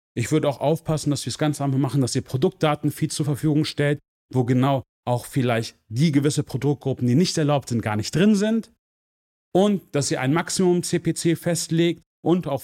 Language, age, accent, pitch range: German, 40-59, German, 130-175 Hz